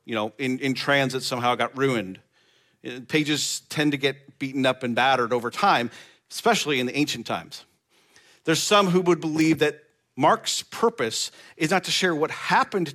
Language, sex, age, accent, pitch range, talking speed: English, male, 40-59, American, 130-180 Hz, 175 wpm